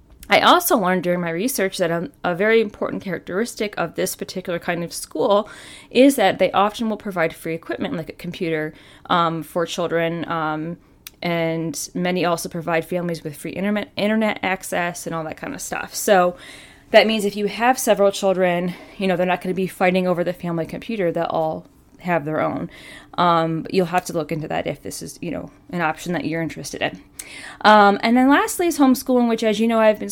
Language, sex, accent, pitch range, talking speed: English, female, American, 170-215 Hz, 210 wpm